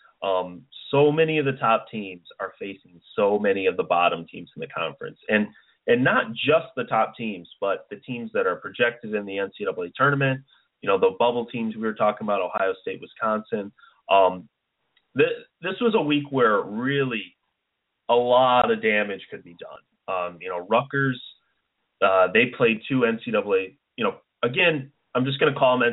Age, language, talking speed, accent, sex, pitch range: 30-49, English, 185 wpm, American, male, 110-160 Hz